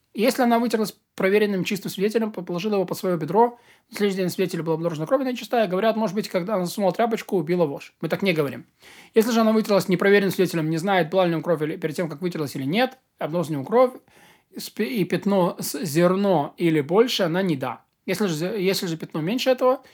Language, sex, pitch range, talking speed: Russian, male, 165-215 Hz, 210 wpm